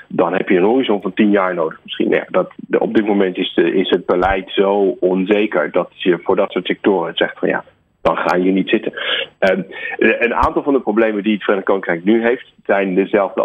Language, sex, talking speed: Dutch, male, 205 wpm